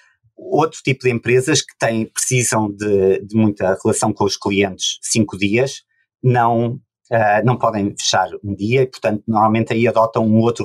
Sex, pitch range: male, 105-125 Hz